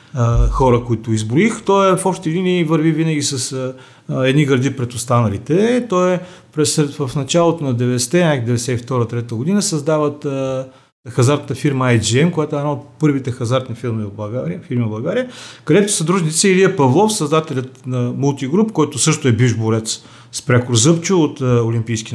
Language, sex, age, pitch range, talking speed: Bulgarian, male, 40-59, 125-170 Hz, 155 wpm